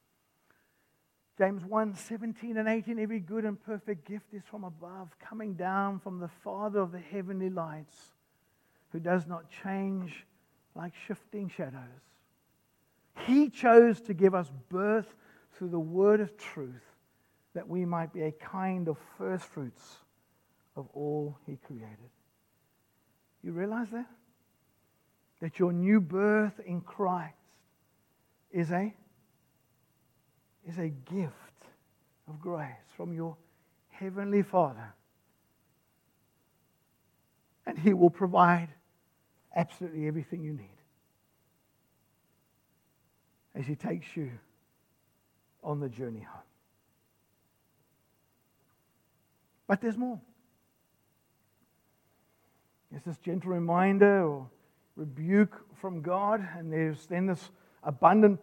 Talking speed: 105 wpm